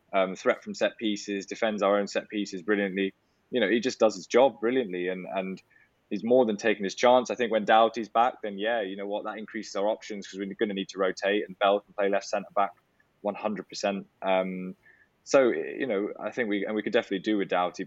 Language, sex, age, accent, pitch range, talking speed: English, male, 10-29, British, 95-105 Hz, 240 wpm